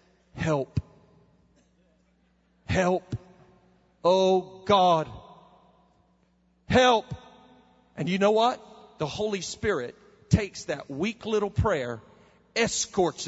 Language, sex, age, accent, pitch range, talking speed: English, male, 40-59, American, 155-255 Hz, 80 wpm